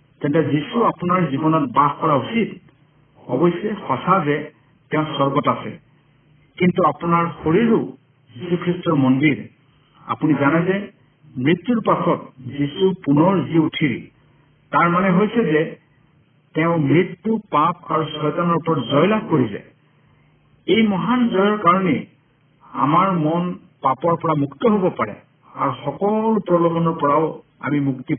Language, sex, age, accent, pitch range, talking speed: Hindi, male, 60-79, native, 145-180 Hz, 85 wpm